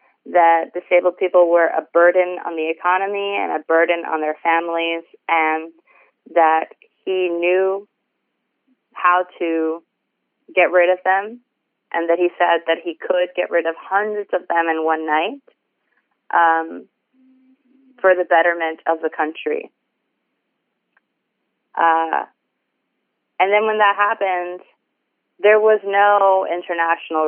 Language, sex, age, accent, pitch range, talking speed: English, female, 30-49, American, 165-200 Hz, 130 wpm